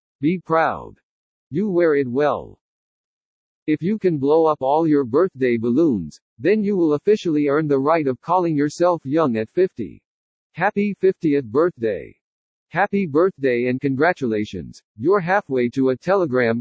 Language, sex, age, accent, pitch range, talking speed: English, male, 50-69, American, 135-185 Hz, 145 wpm